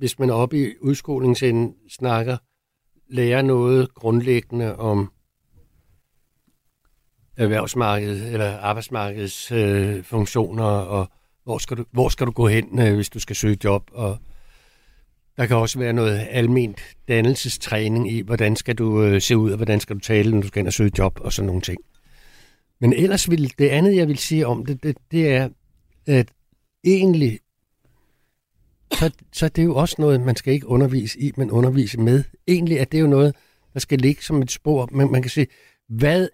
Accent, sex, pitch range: native, male, 110-140 Hz